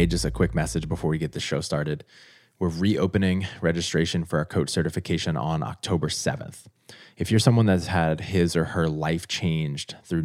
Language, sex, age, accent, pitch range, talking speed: English, male, 20-39, American, 80-95 Hz, 180 wpm